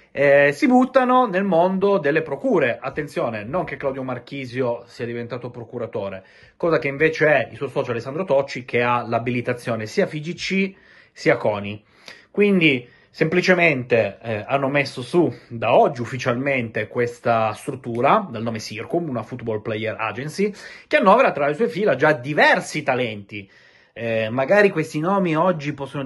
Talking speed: 145 wpm